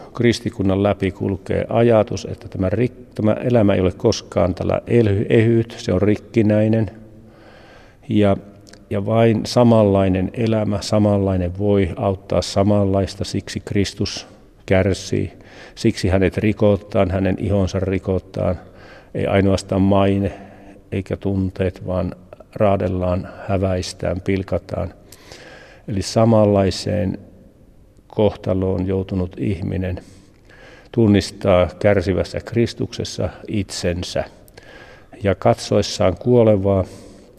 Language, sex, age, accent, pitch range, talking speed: Finnish, male, 50-69, native, 95-105 Hz, 90 wpm